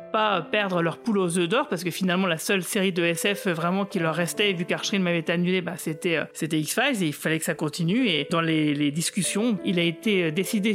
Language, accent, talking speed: French, French, 240 wpm